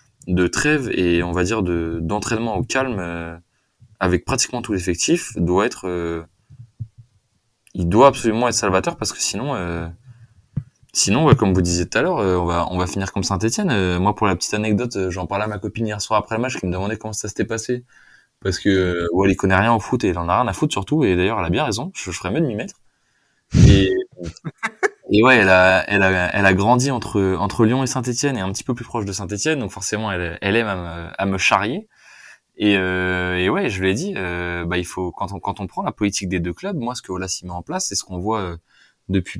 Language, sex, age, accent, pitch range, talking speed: French, male, 20-39, French, 90-120 Hz, 250 wpm